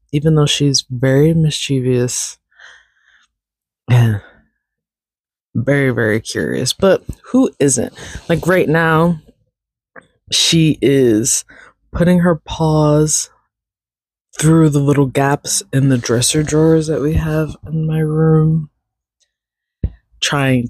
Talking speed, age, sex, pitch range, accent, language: 100 wpm, 20-39, female, 110-155 Hz, American, English